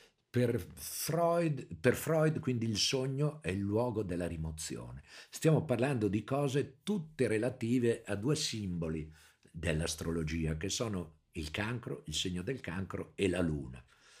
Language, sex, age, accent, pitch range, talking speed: Italian, male, 50-69, native, 85-125 Hz, 135 wpm